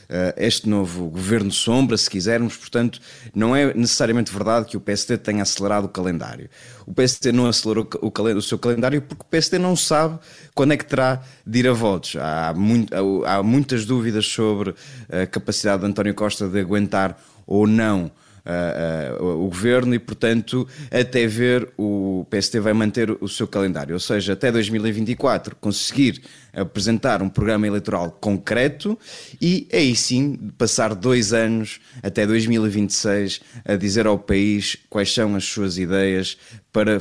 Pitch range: 100-130 Hz